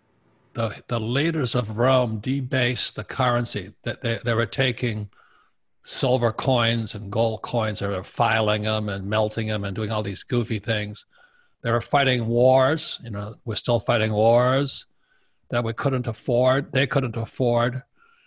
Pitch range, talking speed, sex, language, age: 110-130 Hz, 155 wpm, male, English, 60-79